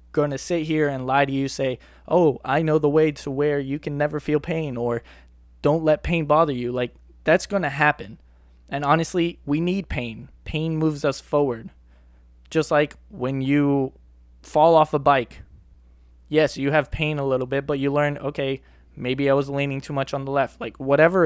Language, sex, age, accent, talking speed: English, male, 20-39, American, 200 wpm